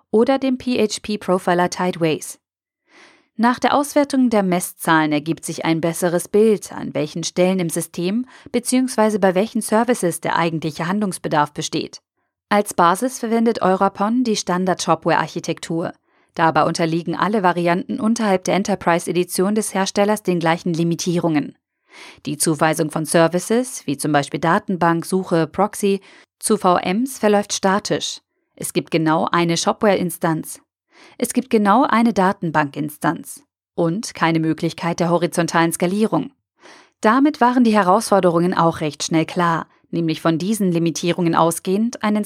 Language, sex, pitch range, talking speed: German, female, 165-215 Hz, 125 wpm